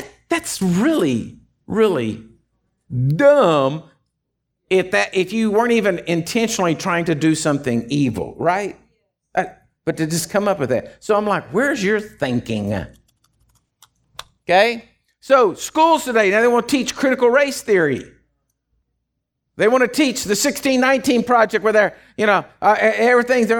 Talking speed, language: 140 wpm, English